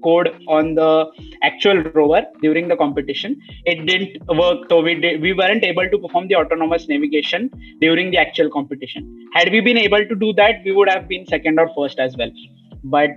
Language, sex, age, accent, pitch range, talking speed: English, male, 20-39, Indian, 145-185 Hz, 195 wpm